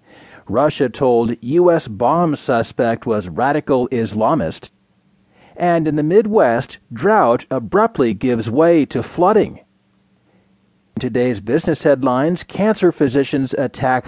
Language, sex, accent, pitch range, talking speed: English, male, American, 125-170 Hz, 105 wpm